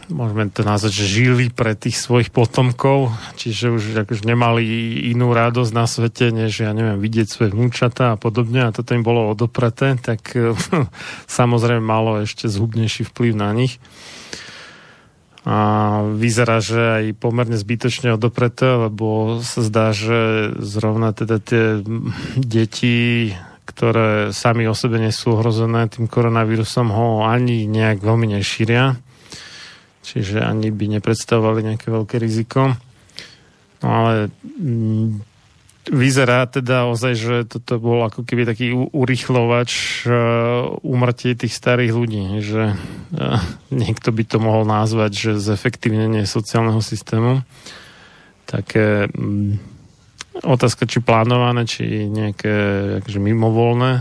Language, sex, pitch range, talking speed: Slovak, male, 110-120 Hz, 125 wpm